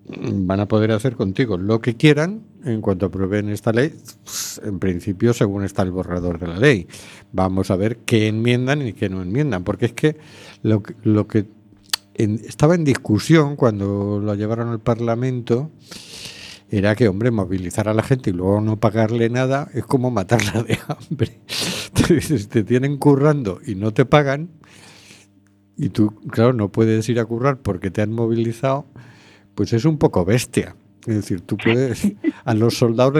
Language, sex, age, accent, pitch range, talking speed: Spanish, male, 50-69, Spanish, 100-125 Hz, 170 wpm